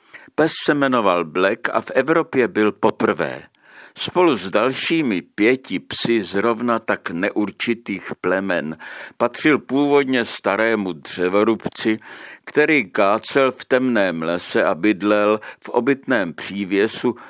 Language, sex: Czech, male